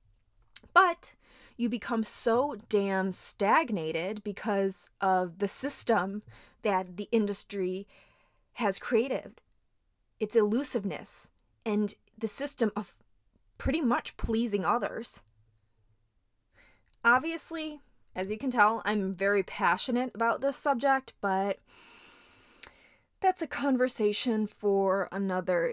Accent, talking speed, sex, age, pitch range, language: American, 100 wpm, female, 20-39, 185-235 Hz, English